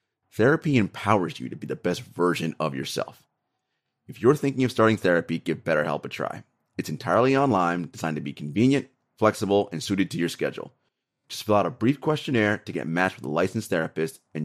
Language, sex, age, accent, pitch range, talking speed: English, male, 30-49, American, 85-120 Hz, 195 wpm